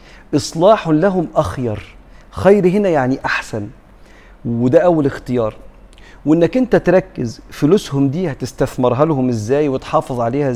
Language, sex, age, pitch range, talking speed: Arabic, male, 50-69, 125-170 Hz, 115 wpm